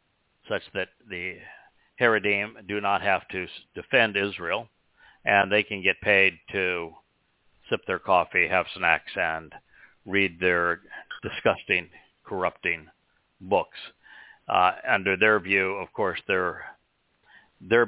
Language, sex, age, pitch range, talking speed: English, male, 60-79, 95-110 Hz, 120 wpm